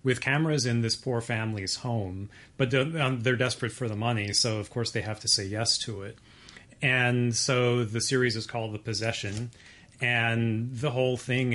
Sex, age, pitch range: male, 30-49, 110-125 Hz